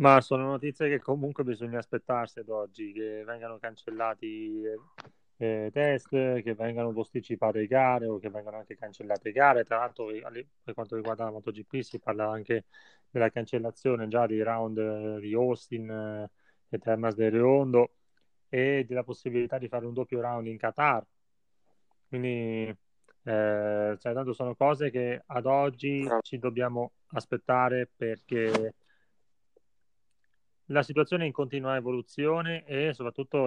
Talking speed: 145 wpm